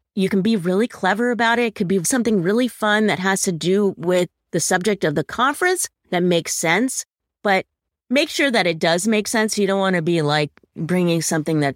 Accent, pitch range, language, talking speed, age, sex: American, 165-220 Hz, English, 220 wpm, 30-49, female